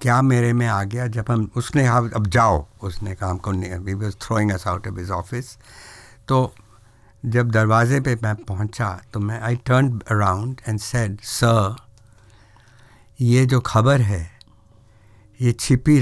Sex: male